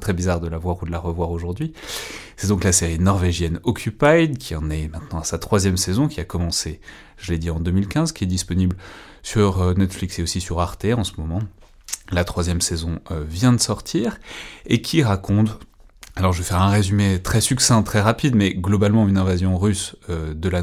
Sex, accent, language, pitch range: male, French, French, 85-100 Hz